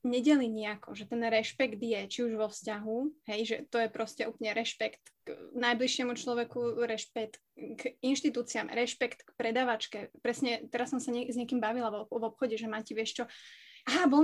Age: 20-39